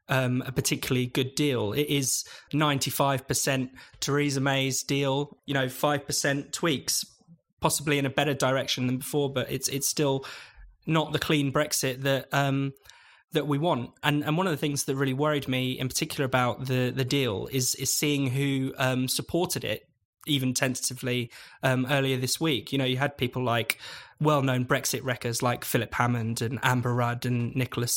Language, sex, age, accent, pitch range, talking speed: English, male, 20-39, British, 125-145 Hz, 180 wpm